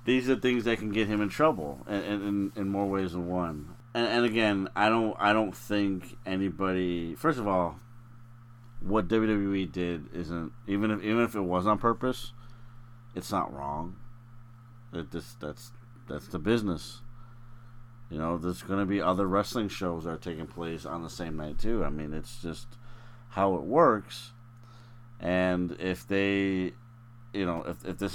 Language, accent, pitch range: English, American, 90-115 Hz